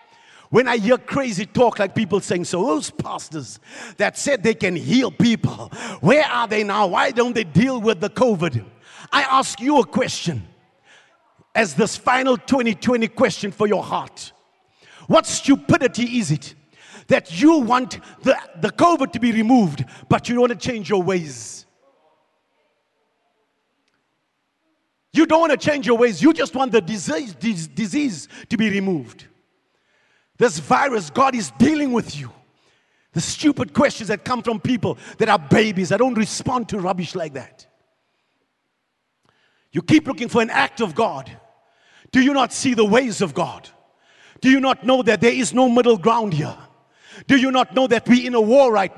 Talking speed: 170 wpm